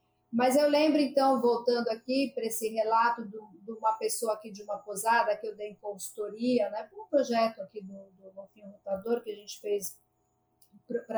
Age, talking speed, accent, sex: 40-59, 185 wpm, Brazilian, female